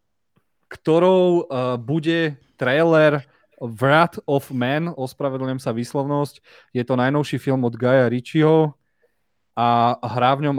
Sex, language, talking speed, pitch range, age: male, Slovak, 115 wpm, 115-150 Hz, 30-49